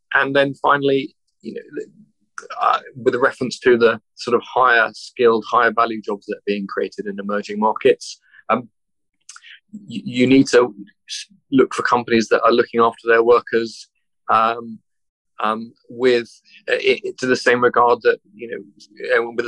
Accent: British